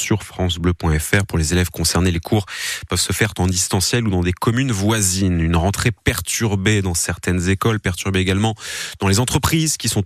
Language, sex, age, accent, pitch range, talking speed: French, male, 30-49, French, 100-130 Hz, 185 wpm